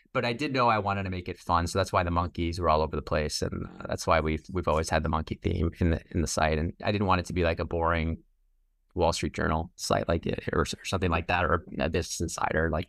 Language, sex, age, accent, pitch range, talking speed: English, male, 20-39, American, 90-115 Hz, 285 wpm